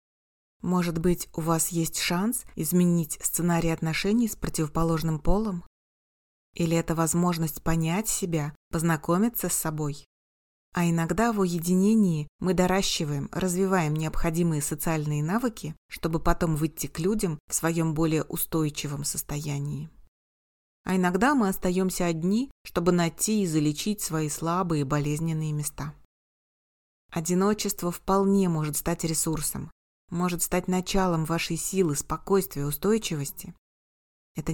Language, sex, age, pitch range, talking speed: Russian, female, 30-49, 155-190 Hz, 120 wpm